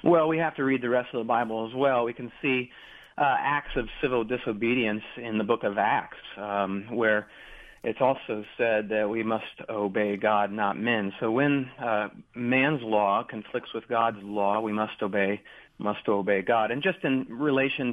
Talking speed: 185 wpm